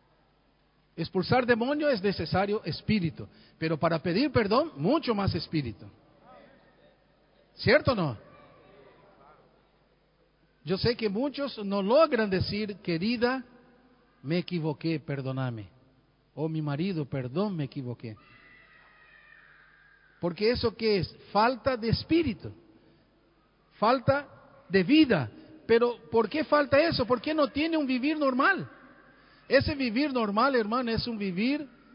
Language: Spanish